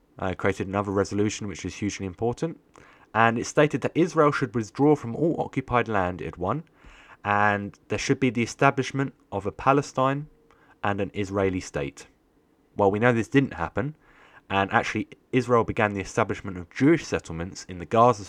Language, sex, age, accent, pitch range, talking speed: English, male, 20-39, British, 95-130 Hz, 175 wpm